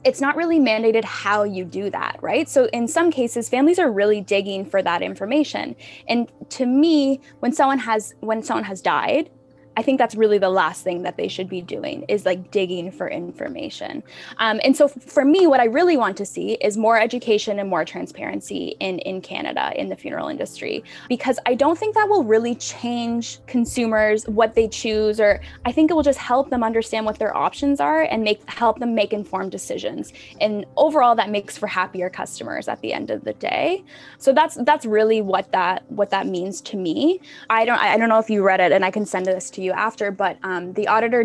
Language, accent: English, American